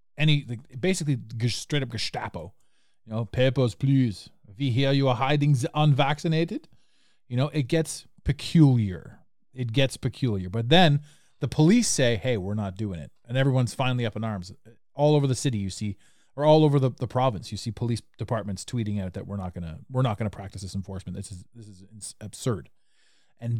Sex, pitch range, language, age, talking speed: male, 110-150 Hz, English, 30-49, 195 wpm